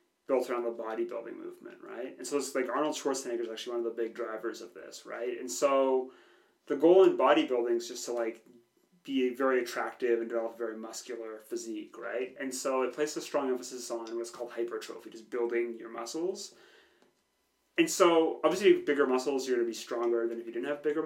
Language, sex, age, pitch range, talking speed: English, male, 30-49, 115-145 Hz, 210 wpm